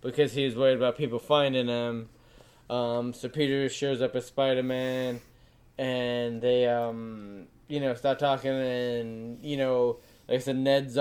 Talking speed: 155 wpm